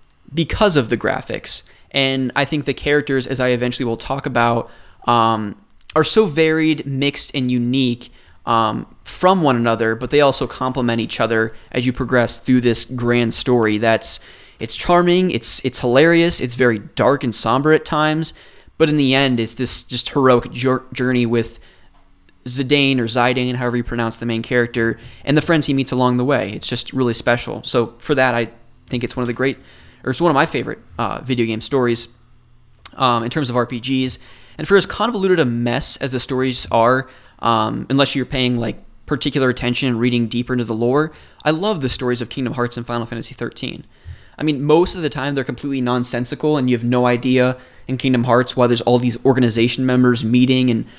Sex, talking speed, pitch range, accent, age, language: male, 195 wpm, 120-135 Hz, American, 20-39, English